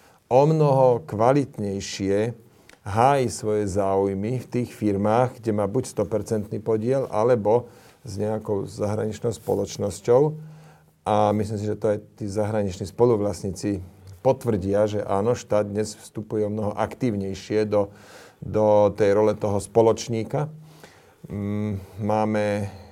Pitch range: 100-115 Hz